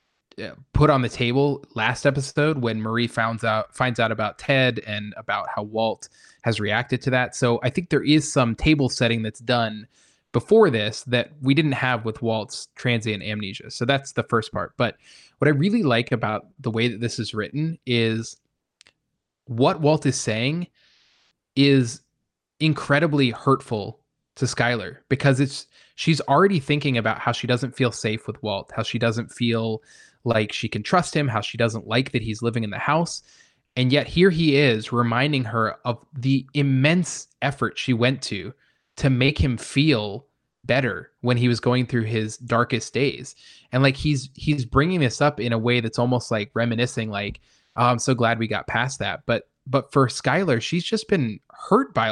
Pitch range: 115-140 Hz